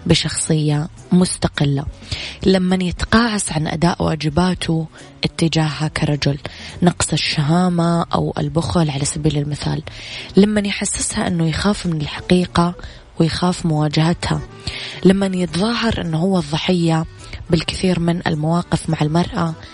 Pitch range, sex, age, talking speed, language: 150-180 Hz, female, 20-39, 105 wpm, English